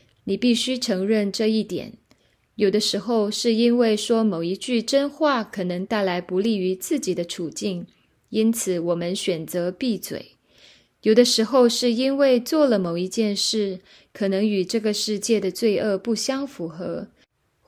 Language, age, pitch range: Chinese, 20-39, 190-240 Hz